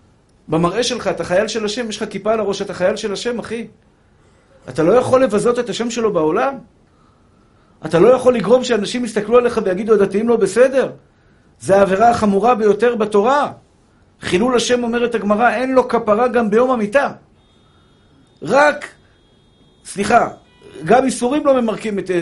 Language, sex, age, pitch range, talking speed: Hebrew, male, 50-69, 170-230 Hz, 155 wpm